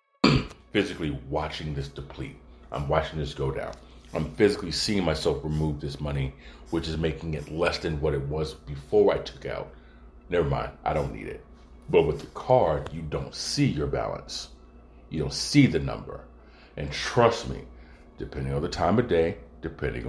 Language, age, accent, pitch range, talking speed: English, 40-59, American, 70-85 Hz, 175 wpm